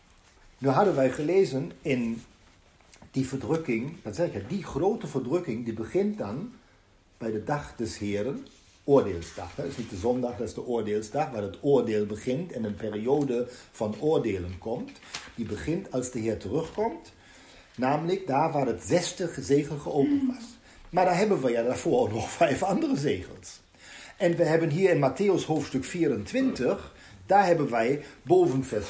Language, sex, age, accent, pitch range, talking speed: Dutch, male, 50-69, German, 130-200 Hz, 160 wpm